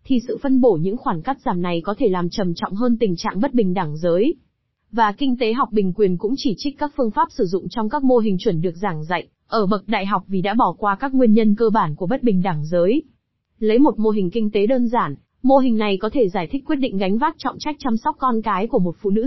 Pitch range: 195-245 Hz